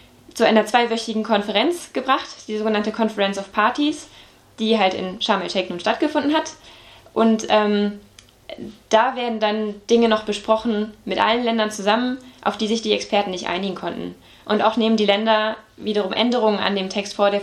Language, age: German, 20-39